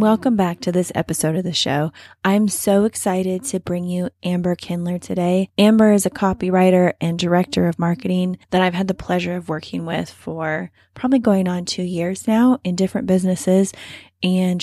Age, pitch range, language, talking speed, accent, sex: 10-29, 170-200 Hz, English, 180 wpm, American, female